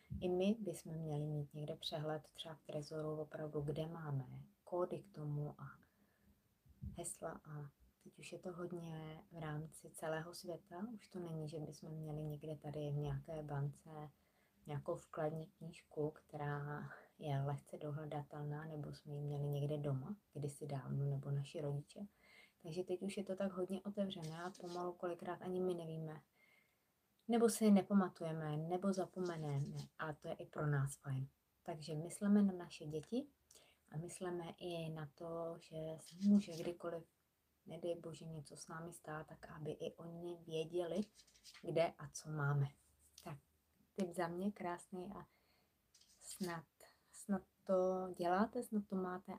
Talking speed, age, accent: 150 wpm, 20-39, native